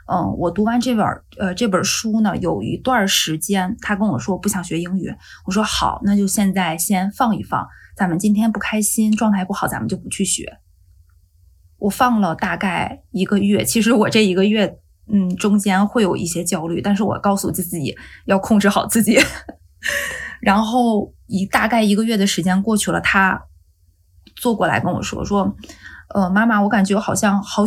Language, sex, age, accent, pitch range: Chinese, female, 20-39, native, 170-210 Hz